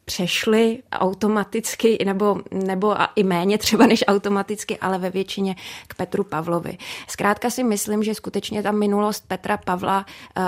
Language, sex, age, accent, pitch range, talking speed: Czech, female, 20-39, native, 185-205 Hz, 145 wpm